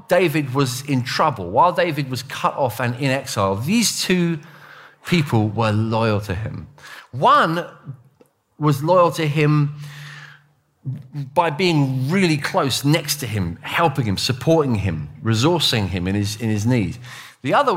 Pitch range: 110-150 Hz